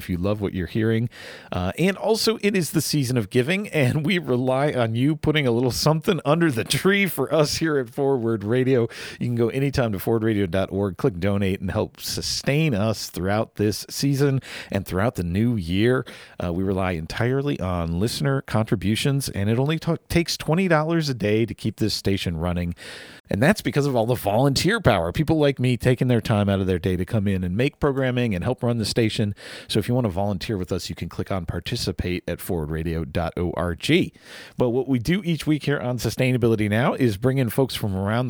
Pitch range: 105-145 Hz